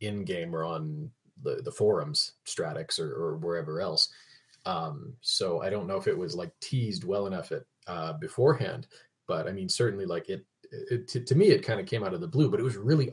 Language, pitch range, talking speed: English, 105-155 Hz, 220 wpm